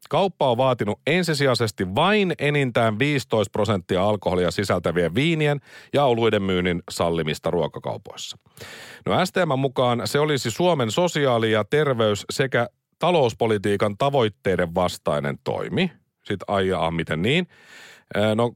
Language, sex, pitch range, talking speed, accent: Finnish, male, 105-165 Hz, 115 wpm, native